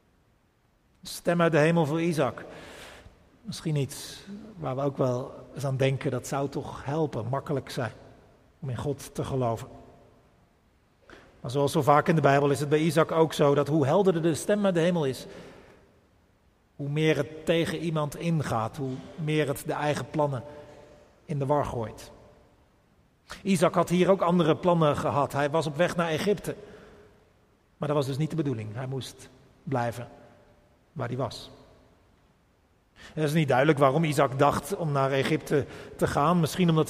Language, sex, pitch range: Dutch, male, 135-160 Hz